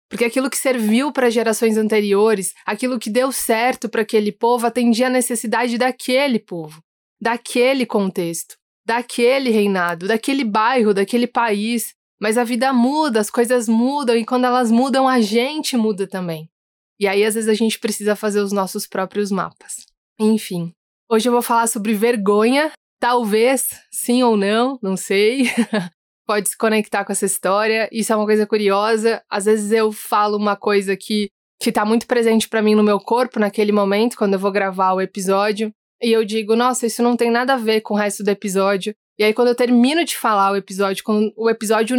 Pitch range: 205-240 Hz